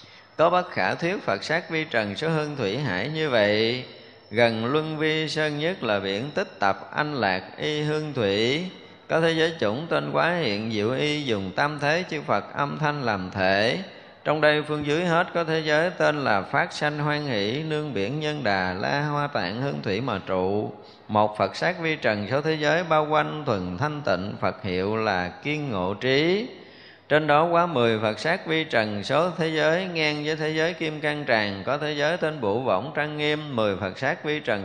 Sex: male